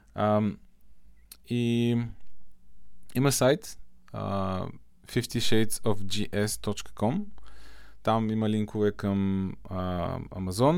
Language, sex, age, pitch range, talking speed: Bulgarian, male, 20-39, 105-135 Hz, 65 wpm